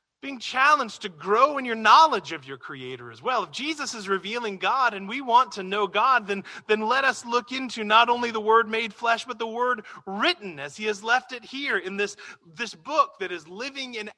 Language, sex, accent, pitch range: English, male, American, 140-230 Hz